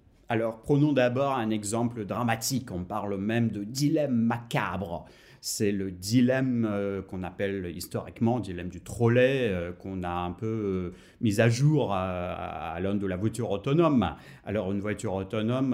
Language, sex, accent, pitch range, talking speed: French, male, French, 110-155 Hz, 165 wpm